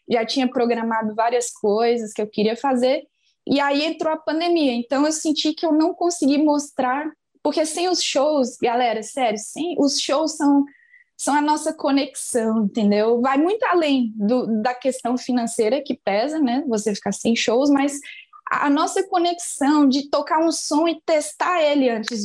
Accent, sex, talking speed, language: Brazilian, female, 165 wpm, Portuguese